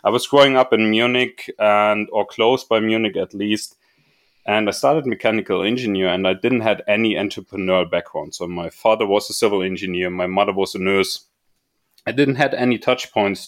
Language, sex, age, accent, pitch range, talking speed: English, male, 30-49, German, 100-120 Hz, 190 wpm